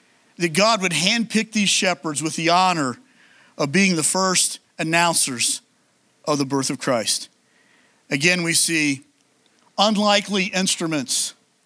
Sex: male